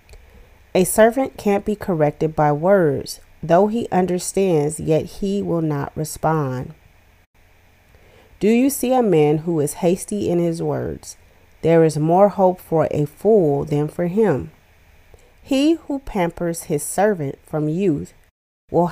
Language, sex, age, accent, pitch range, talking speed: English, female, 30-49, American, 125-185 Hz, 140 wpm